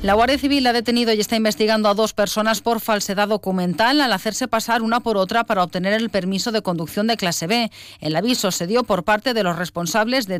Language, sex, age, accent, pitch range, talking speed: Spanish, female, 40-59, Spanish, 185-225 Hz, 225 wpm